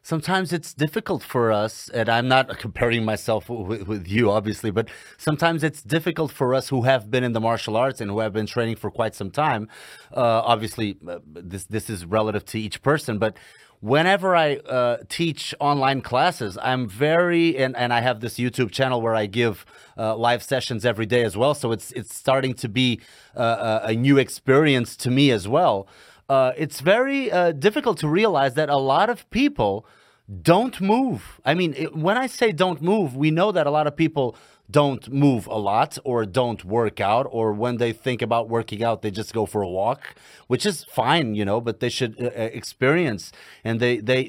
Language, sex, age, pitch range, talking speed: Portuguese, male, 30-49, 115-150 Hz, 200 wpm